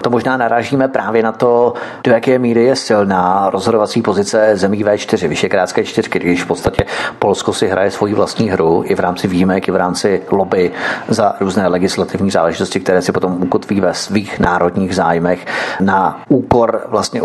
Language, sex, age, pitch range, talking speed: Czech, male, 40-59, 90-115 Hz, 175 wpm